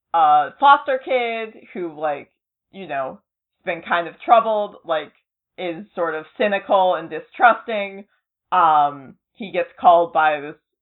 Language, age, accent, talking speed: English, 20-39, American, 135 wpm